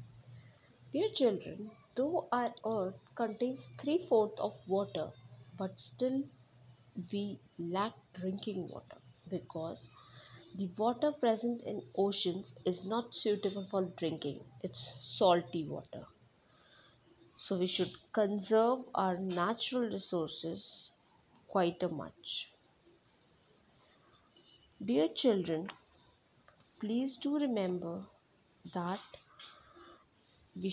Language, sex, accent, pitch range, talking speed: English, female, Indian, 175-230 Hz, 90 wpm